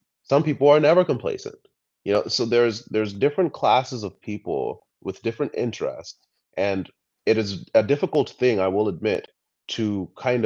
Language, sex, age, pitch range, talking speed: English, male, 30-49, 95-145 Hz, 160 wpm